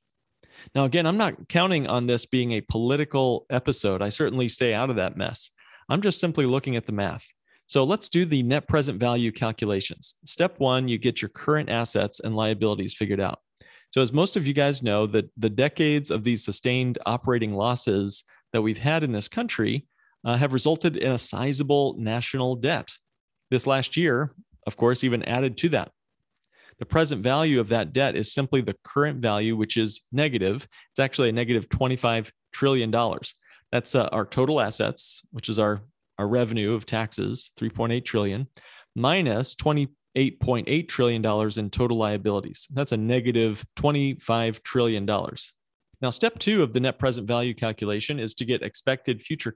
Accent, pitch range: American, 110-140 Hz